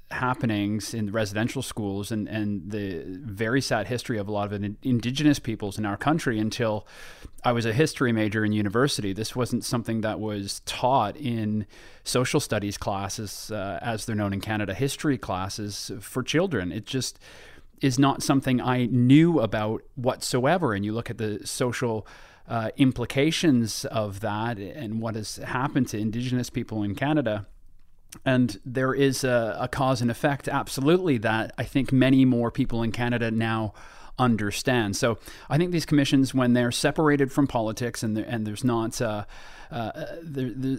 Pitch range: 110-130 Hz